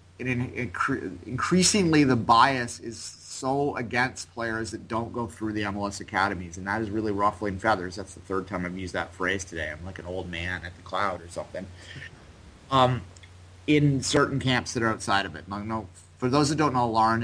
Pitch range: 90-115 Hz